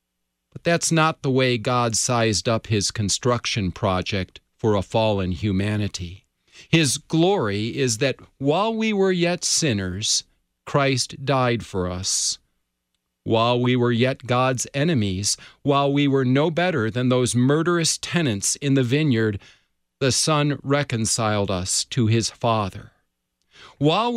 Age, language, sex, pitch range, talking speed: 40-59, English, male, 95-135 Hz, 135 wpm